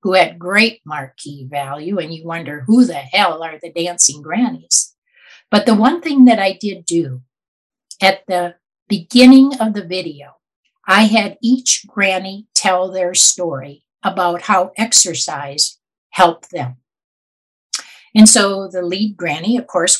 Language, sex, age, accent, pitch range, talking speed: English, female, 60-79, American, 175-220 Hz, 145 wpm